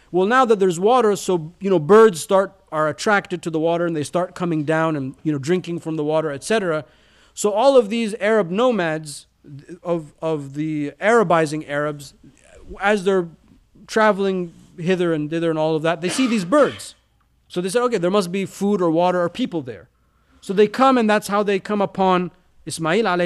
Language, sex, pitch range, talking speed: English, male, 155-195 Hz, 195 wpm